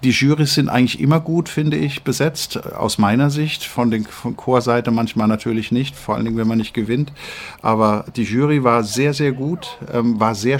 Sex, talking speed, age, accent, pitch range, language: male, 195 wpm, 50-69, German, 105-130 Hz, German